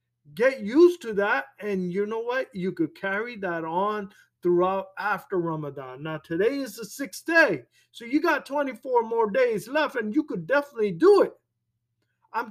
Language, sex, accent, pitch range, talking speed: English, male, American, 160-225 Hz, 175 wpm